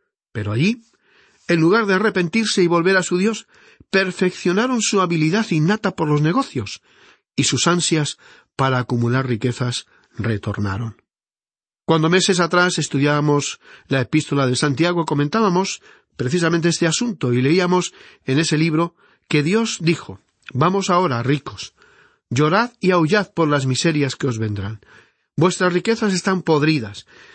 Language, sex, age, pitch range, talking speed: Spanish, male, 40-59, 135-185 Hz, 135 wpm